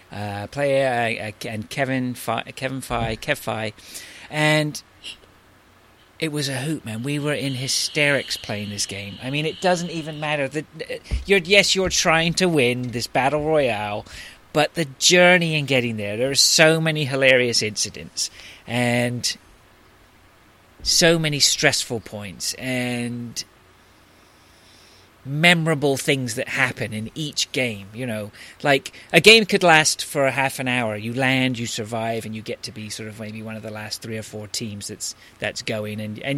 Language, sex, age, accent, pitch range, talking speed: English, male, 30-49, British, 110-150 Hz, 170 wpm